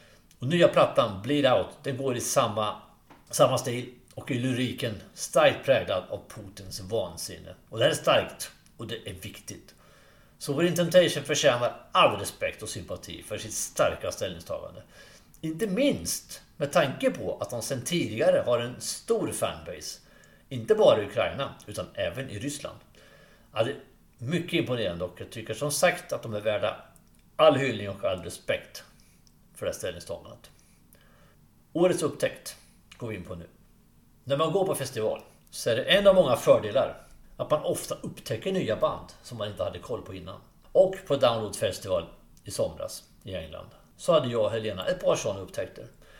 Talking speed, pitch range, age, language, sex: 170 wpm, 120-180 Hz, 60-79, English, male